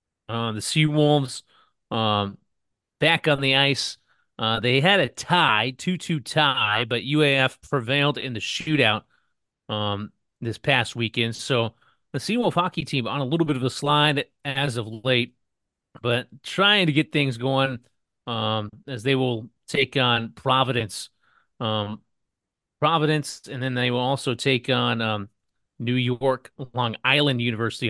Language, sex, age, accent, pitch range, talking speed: English, male, 30-49, American, 115-145 Hz, 140 wpm